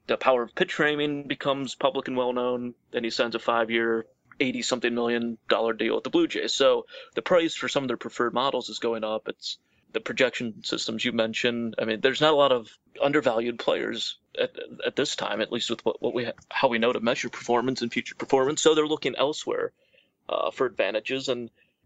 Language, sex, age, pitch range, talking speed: English, male, 30-49, 115-155 Hz, 210 wpm